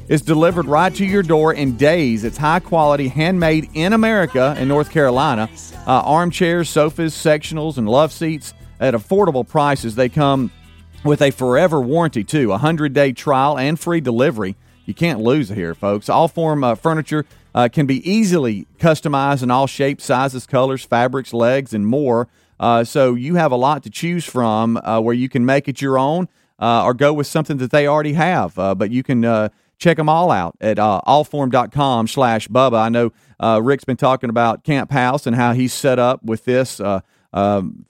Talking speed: 190 wpm